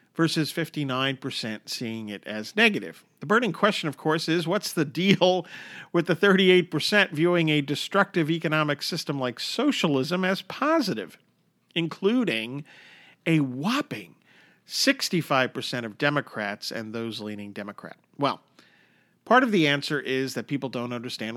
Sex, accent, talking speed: male, American, 130 wpm